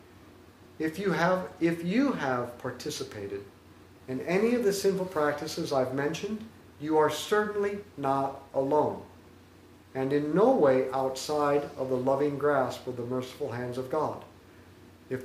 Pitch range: 125-165 Hz